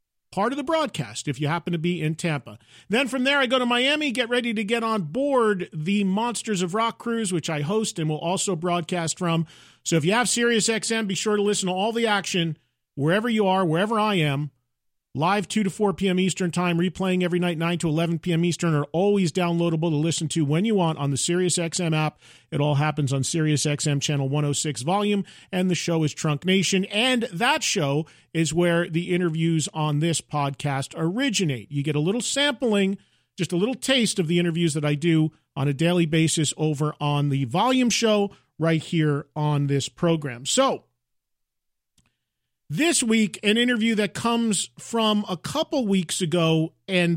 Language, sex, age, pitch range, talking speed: English, male, 40-59, 155-205 Hz, 195 wpm